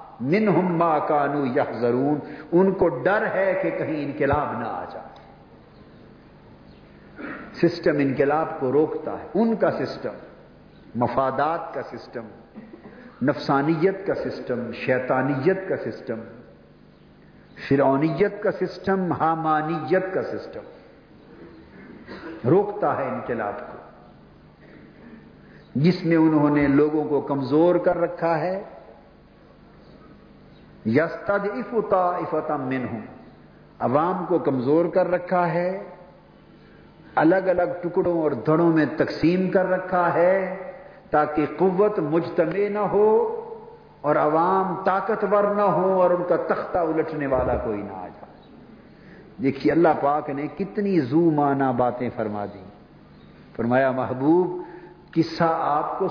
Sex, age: male, 50-69